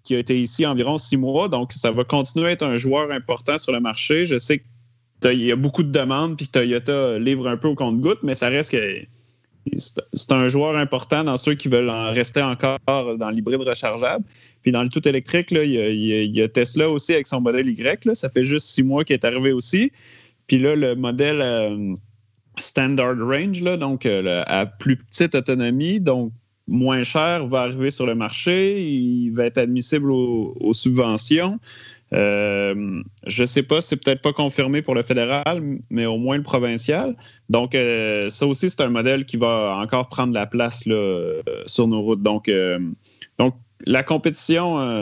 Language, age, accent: French, 30-49, Canadian